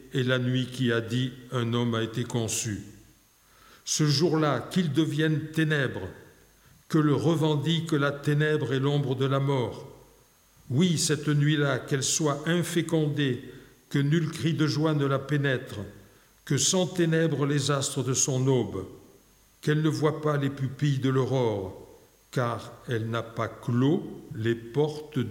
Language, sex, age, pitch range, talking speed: French, male, 60-79, 120-150 Hz, 150 wpm